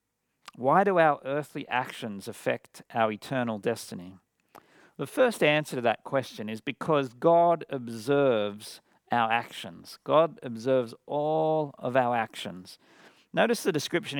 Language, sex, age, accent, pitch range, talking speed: English, male, 50-69, Australian, 120-155 Hz, 125 wpm